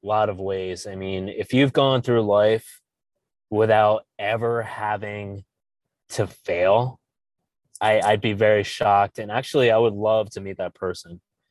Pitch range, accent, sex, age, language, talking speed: 95-115 Hz, American, male, 20-39, English, 150 wpm